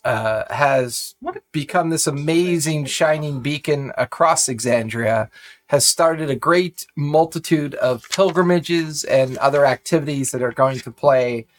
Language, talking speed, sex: English, 125 wpm, male